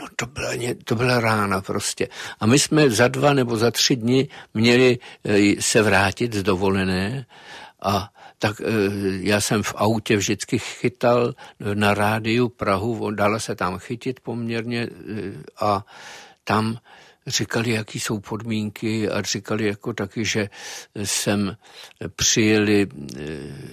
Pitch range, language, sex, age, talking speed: 100-115 Hz, Czech, male, 50-69, 115 wpm